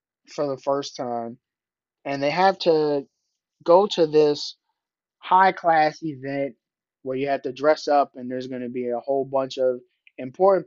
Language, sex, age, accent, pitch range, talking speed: English, male, 20-39, American, 130-155 Hz, 170 wpm